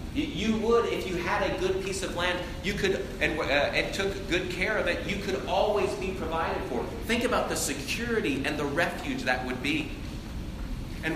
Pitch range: 135-185 Hz